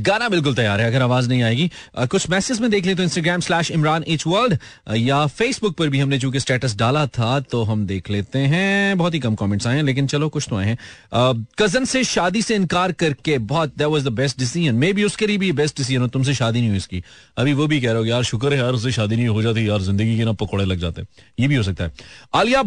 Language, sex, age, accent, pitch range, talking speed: Hindi, male, 30-49, native, 120-175 Hz, 95 wpm